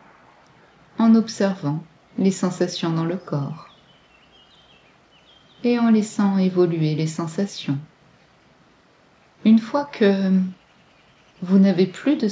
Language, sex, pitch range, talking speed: French, female, 165-205 Hz, 95 wpm